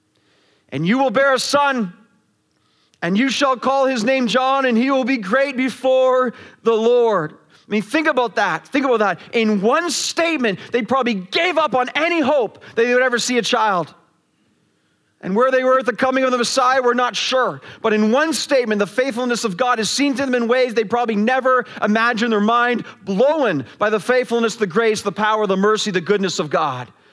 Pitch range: 220-260 Hz